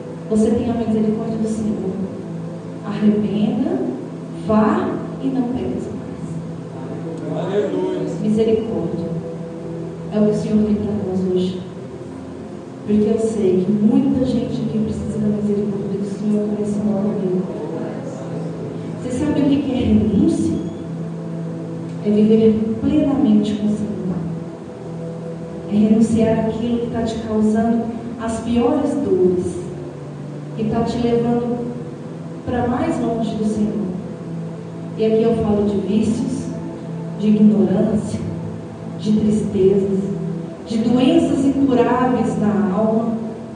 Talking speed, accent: 115 wpm, Brazilian